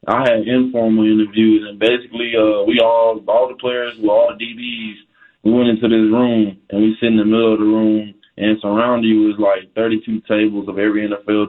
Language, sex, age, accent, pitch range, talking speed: English, male, 20-39, American, 105-115 Hz, 215 wpm